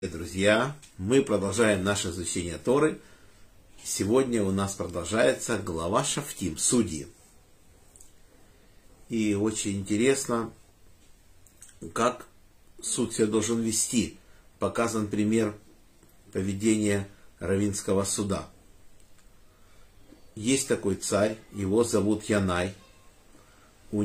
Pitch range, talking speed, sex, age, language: 100-120 Hz, 80 wpm, male, 50-69, Russian